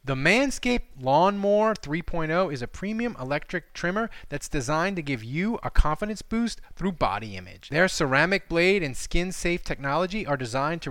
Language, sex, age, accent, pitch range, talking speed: English, male, 30-49, American, 145-205 Hz, 165 wpm